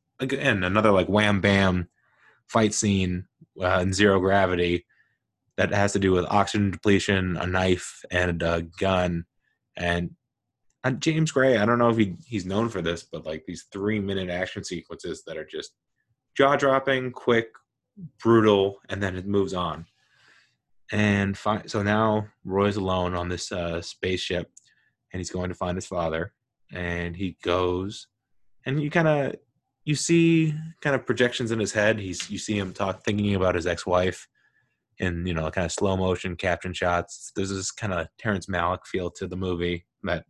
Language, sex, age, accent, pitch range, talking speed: English, male, 20-39, American, 90-110 Hz, 170 wpm